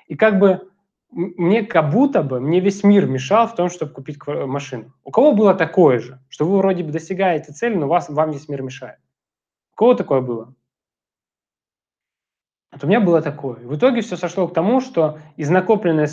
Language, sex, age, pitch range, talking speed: Russian, male, 20-39, 130-185 Hz, 180 wpm